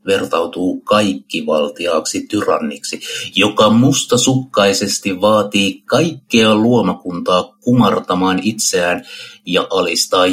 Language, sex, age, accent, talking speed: Finnish, male, 60-79, native, 75 wpm